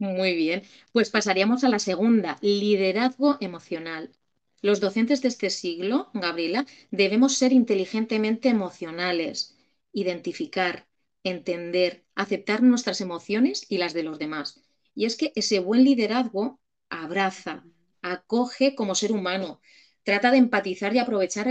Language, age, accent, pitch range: Spanish, 30-49, Spanish, 180-230 Hz